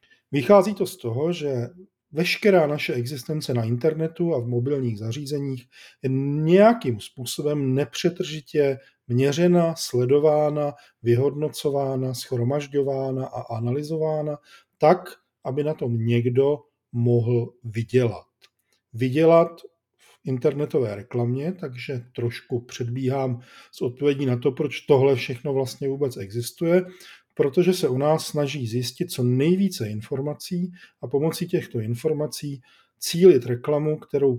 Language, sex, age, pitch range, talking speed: Czech, male, 40-59, 120-155 Hz, 110 wpm